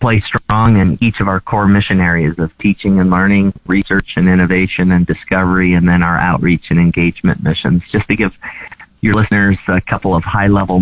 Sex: male